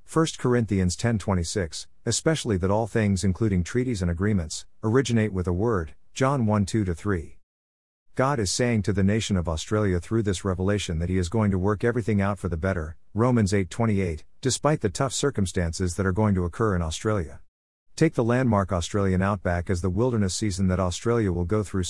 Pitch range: 90-115 Hz